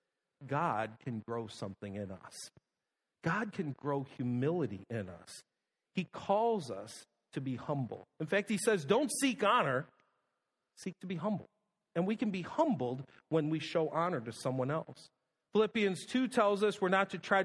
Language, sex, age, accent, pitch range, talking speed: English, male, 50-69, American, 135-215 Hz, 170 wpm